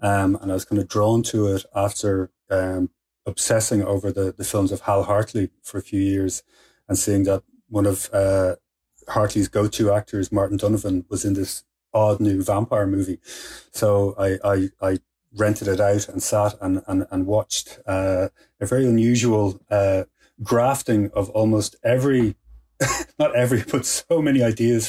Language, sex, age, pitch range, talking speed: English, male, 30-49, 95-110 Hz, 170 wpm